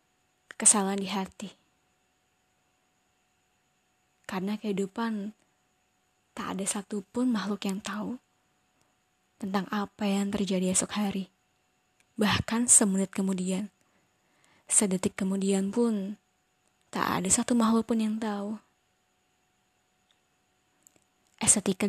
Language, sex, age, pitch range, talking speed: Indonesian, female, 20-39, 185-210 Hz, 85 wpm